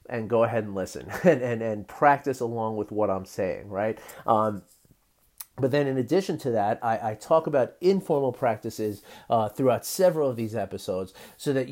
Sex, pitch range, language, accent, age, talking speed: male, 115-140 Hz, English, American, 40-59, 185 wpm